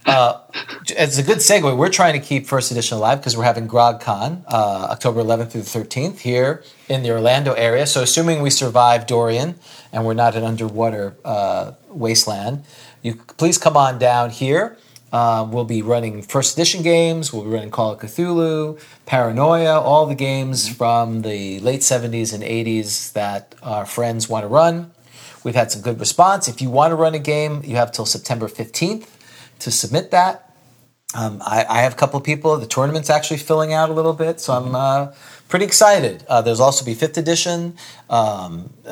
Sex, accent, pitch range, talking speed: male, American, 115-155 Hz, 185 wpm